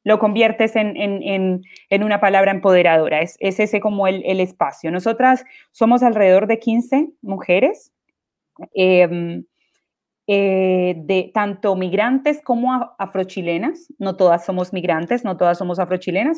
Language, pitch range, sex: Portuguese, 195-260 Hz, female